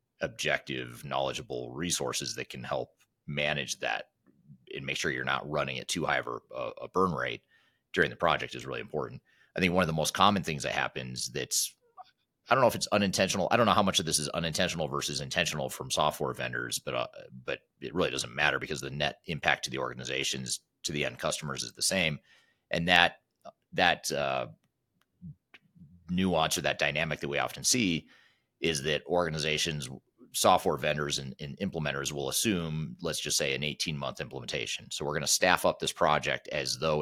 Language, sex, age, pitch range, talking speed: English, male, 30-49, 70-80 Hz, 190 wpm